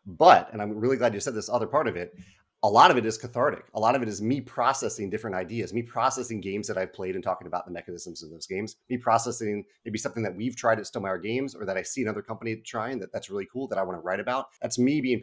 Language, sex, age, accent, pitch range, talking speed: English, male, 30-49, American, 95-120 Hz, 290 wpm